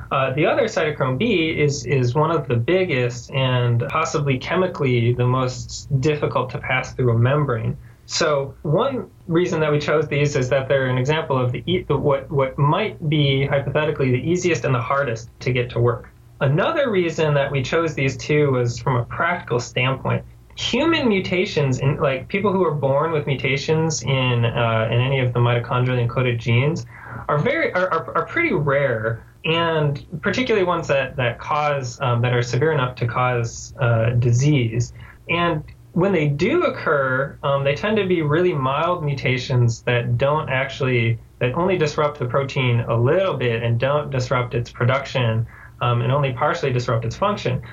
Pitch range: 120-155 Hz